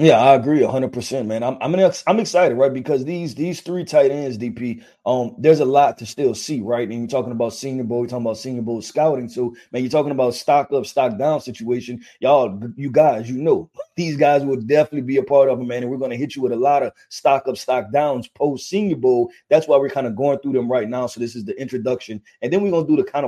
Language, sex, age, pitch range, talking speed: English, male, 20-39, 130-160 Hz, 265 wpm